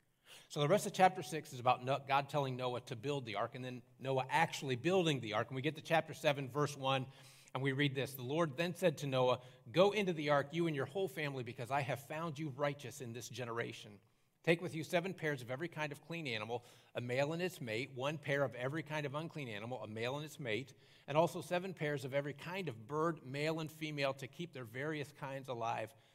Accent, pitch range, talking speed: American, 120-150 Hz, 240 wpm